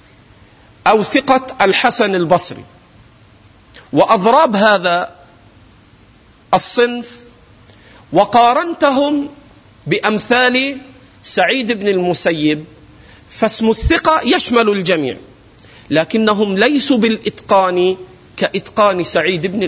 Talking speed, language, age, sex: 65 wpm, Arabic, 50-69, male